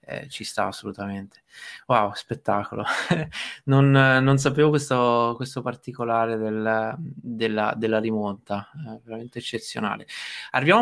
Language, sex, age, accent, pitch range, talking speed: Italian, male, 20-39, native, 110-135 Hz, 110 wpm